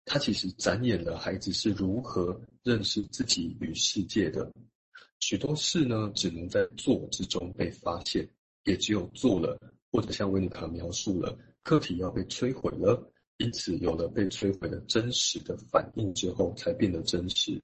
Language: Chinese